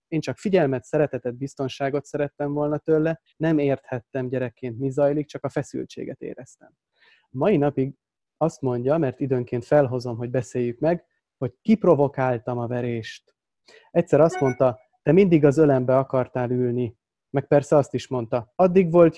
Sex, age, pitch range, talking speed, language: male, 30-49, 125-150 Hz, 145 wpm, Hungarian